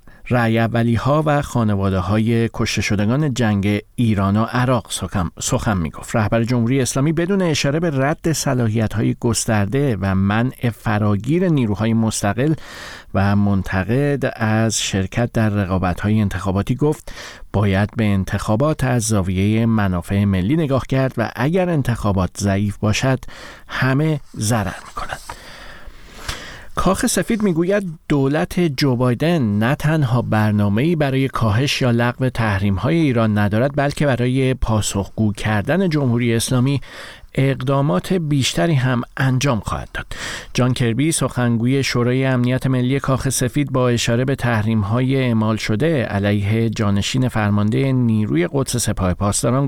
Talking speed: 130 wpm